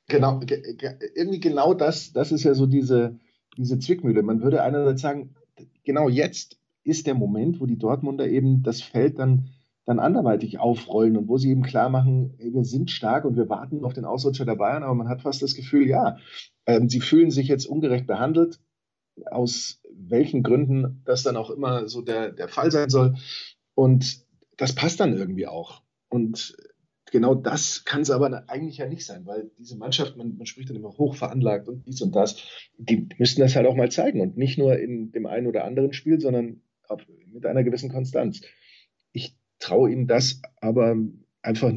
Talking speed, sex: 190 wpm, male